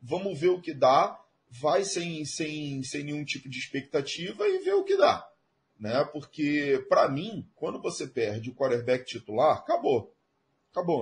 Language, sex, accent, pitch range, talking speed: English, male, Brazilian, 140-215 Hz, 165 wpm